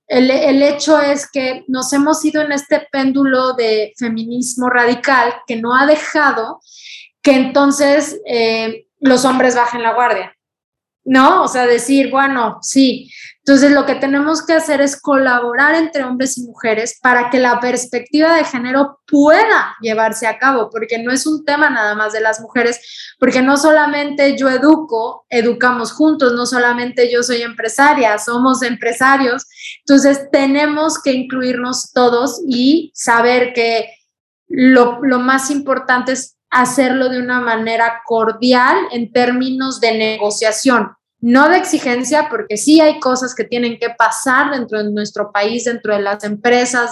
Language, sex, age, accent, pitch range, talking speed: Spanish, female, 20-39, Mexican, 230-275 Hz, 150 wpm